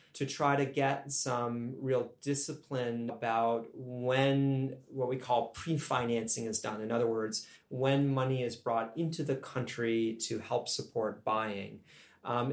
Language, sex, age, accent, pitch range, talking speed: English, male, 30-49, American, 115-135 Hz, 145 wpm